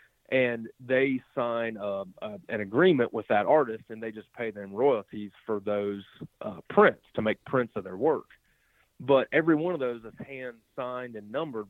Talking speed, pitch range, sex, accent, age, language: 185 wpm, 110-130 Hz, male, American, 40-59, English